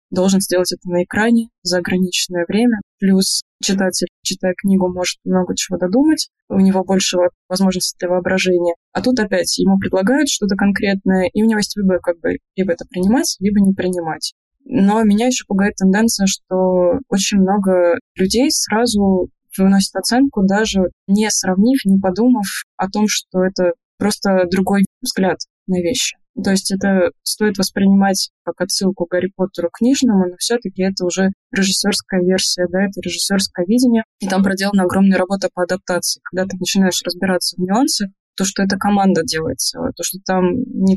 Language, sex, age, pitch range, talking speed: Russian, female, 20-39, 180-205 Hz, 165 wpm